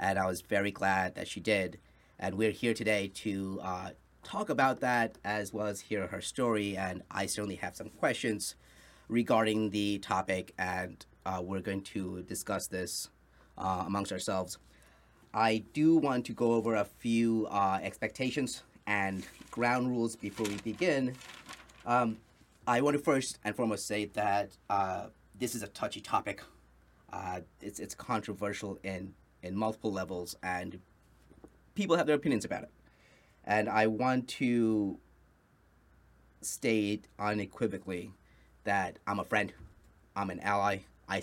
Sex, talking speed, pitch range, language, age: male, 150 wpm, 95-110 Hz, English, 30-49